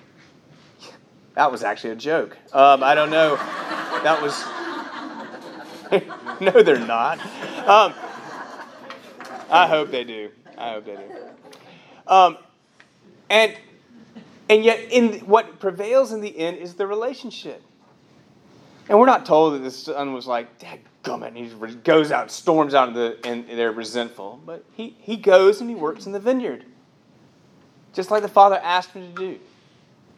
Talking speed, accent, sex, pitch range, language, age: 155 wpm, American, male, 155-225 Hz, English, 30-49